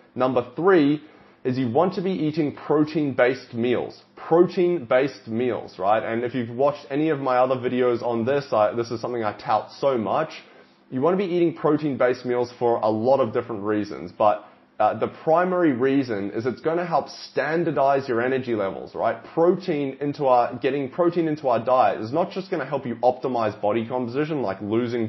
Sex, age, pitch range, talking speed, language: male, 20-39, 115-150 Hz, 190 wpm, English